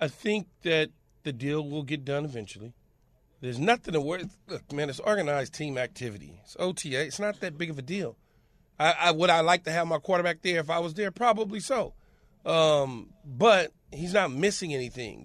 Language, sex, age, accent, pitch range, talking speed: English, male, 40-59, American, 150-190 Hz, 195 wpm